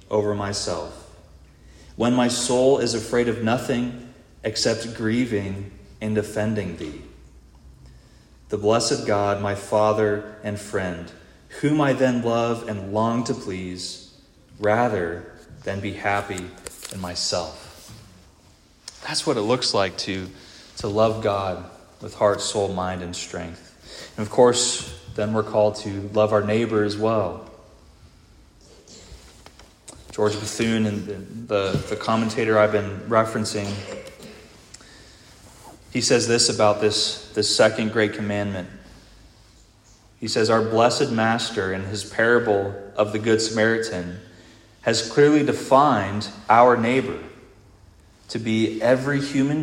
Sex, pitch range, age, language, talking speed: male, 90-110 Hz, 30-49, English, 120 wpm